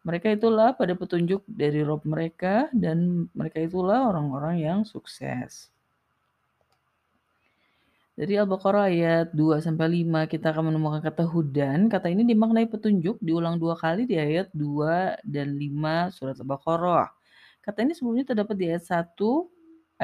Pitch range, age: 160-225 Hz, 30-49